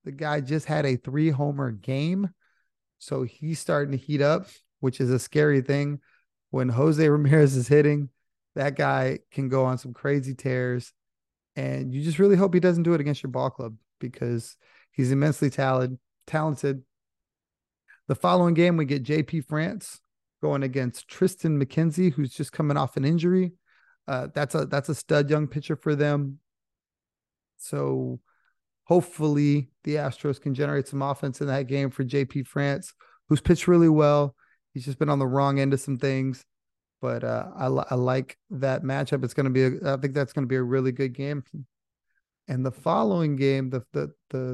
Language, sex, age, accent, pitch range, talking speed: English, male, 30-49, American, 130-155 Hz, 180 wpm